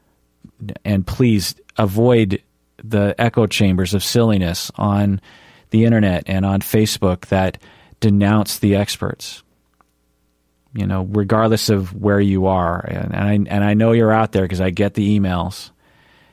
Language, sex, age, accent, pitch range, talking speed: English, male, 40-59, American, 95-115 Hz, 145 wpm